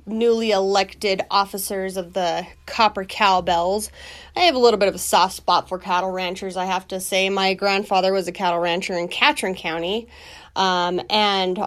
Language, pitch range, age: English, 185-225 Hz, 30-49